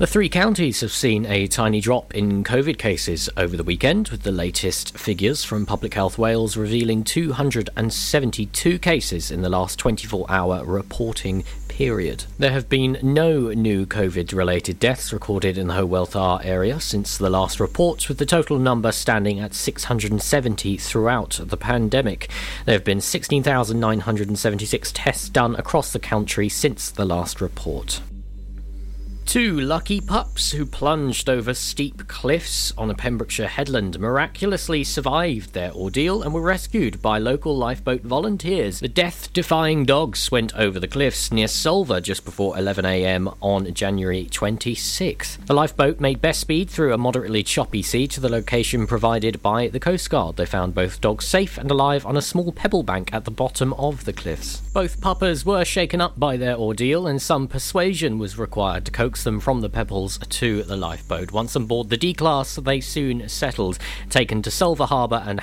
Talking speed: 165 wpm